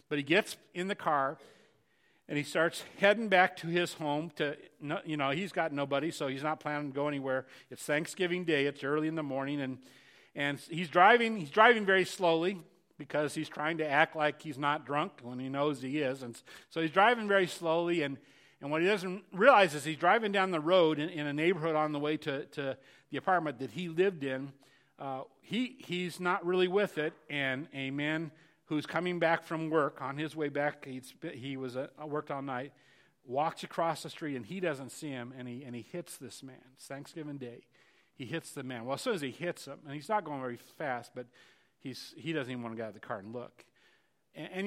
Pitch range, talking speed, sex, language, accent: 135-170 Hz, 240 wpm, male, English, American